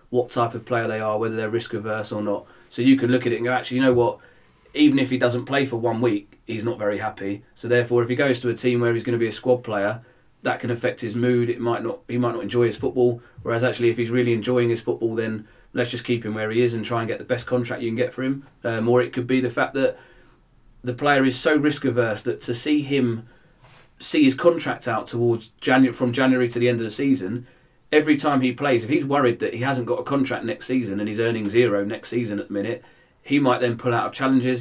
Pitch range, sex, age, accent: 115-130 Hz, male, 30-49, British